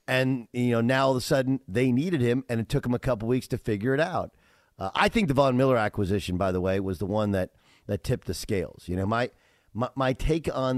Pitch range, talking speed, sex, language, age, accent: 105-135 Hz, 265 wpm, male, English, 50-69, American